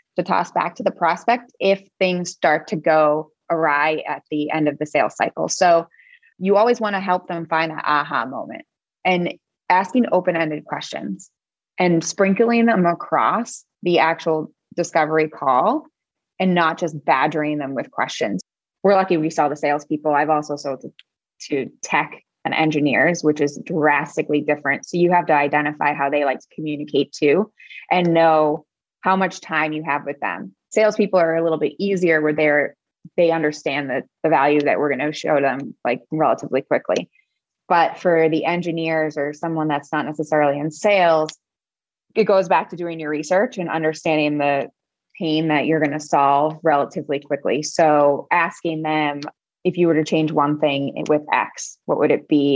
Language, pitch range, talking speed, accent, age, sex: English, 150-175 Hz, 175 wpm, American, 20-39, female